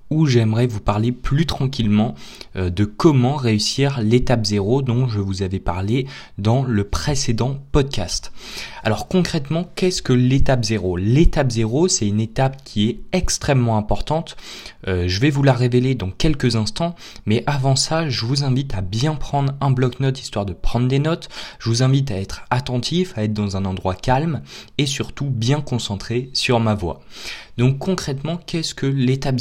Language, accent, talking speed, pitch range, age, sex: French, French, 170 wpm, 105-140 Hz, 20-39, male